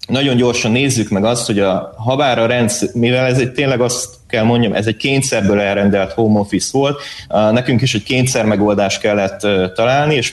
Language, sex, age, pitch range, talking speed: Hungarian, male, 30-49, 100-125 Hz, 190 wpm